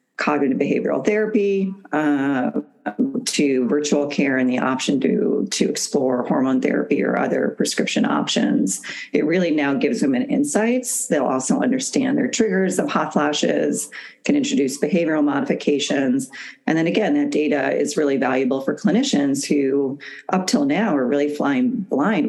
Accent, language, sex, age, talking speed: American, English, female, 40-59, 150 wpm